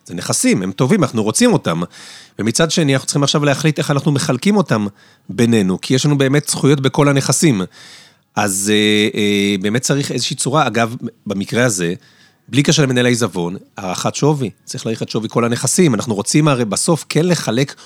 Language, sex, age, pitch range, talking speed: Hebrew, male, 40-59, 120-165 Hz, 175 wpm